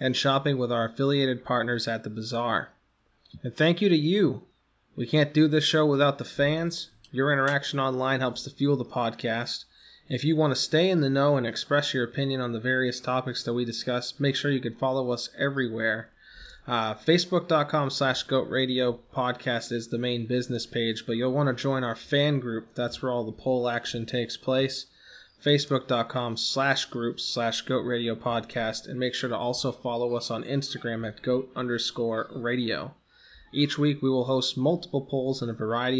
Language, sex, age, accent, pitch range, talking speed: English, male, 20-39, American, 120-145 Hz, 185 wpm